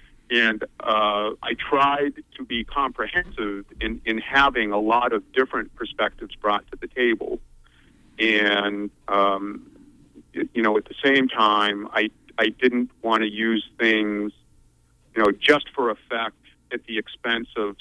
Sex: male